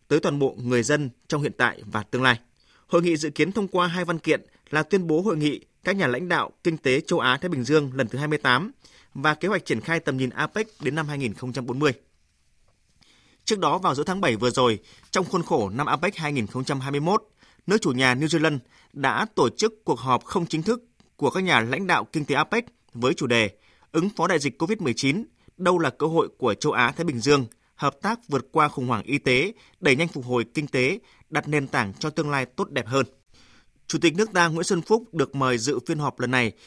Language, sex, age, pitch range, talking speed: Vietnamese, male, 20-39, 125-170 Hz, 230 wpm